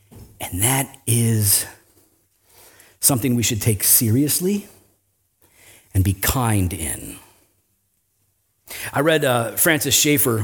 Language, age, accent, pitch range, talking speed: English, 40-59, American, 105-160 Hz, 100 wpm